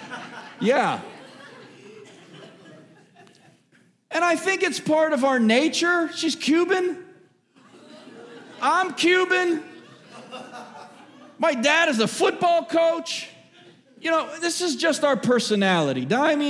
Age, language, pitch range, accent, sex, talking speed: 40-59, English, 195-330 Hz, American, male, 100 wpm